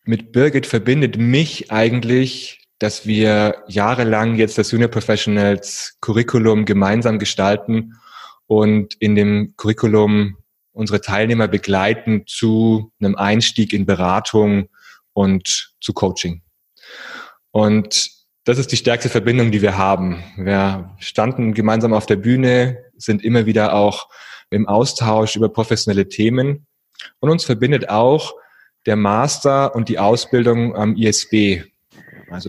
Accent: German